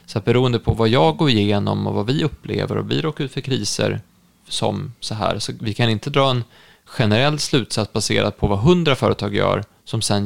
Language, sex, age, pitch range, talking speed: Swedish, male, 20-39, 105-135 Hz, 215 wpm